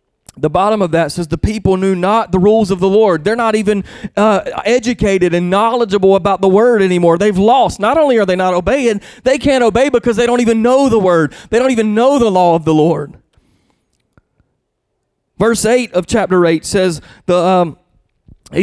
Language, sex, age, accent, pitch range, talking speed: English, male, 30-49, American, 155-215 Hz, 195 wpm